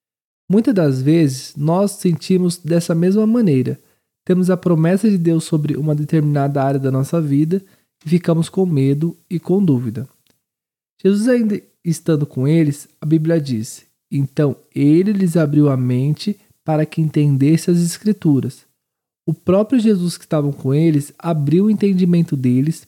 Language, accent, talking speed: Portuguese, Brazilian, 150 wpm